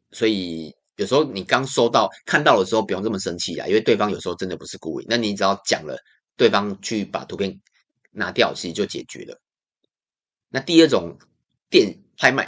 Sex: male